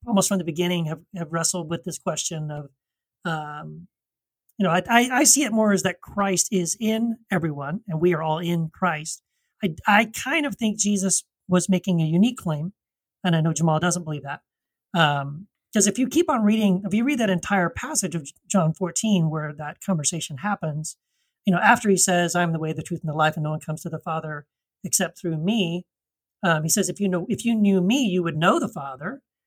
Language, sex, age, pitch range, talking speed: English, male, 40-59, 165-205 Hz, 220 wpm